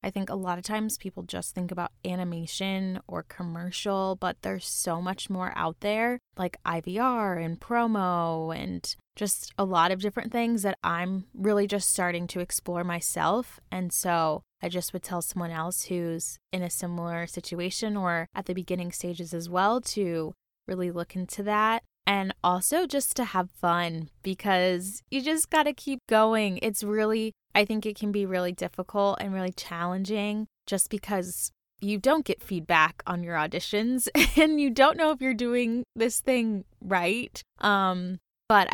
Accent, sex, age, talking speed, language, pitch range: American, female, 10-29, 170 wpm, English, 175-210 Hz